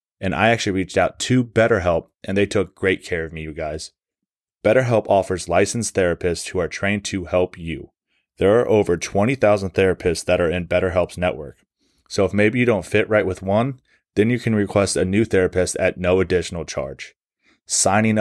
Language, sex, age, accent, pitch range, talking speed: English, male, 20-39, American, 90-105 Hz, 190 wpm